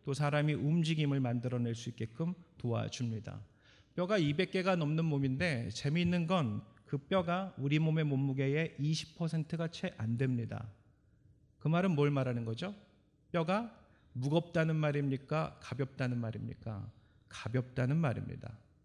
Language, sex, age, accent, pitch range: Korean, male, 40-59, native, 120-175 Hz